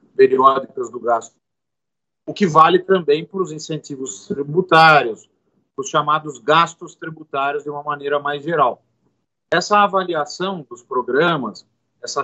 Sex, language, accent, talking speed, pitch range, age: male, Portuguese, Brazilian, 125 wpm, 145-180 Hz, 50-69